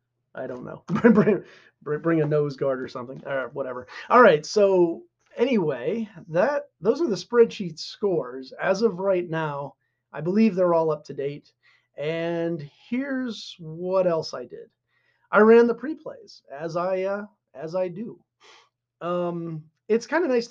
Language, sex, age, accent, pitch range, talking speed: English, male, 30-49, American, 145-200 Hz, 160 wpm